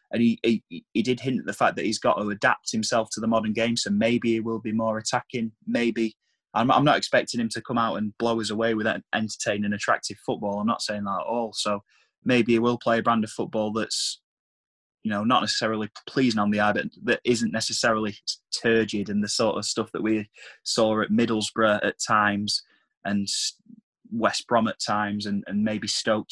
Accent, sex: British, male